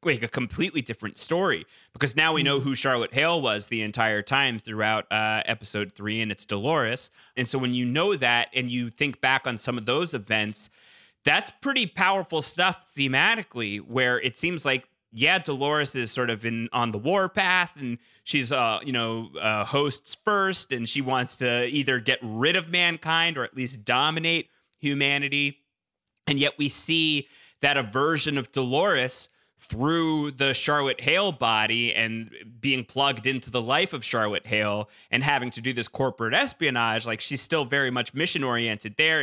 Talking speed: 180 wpm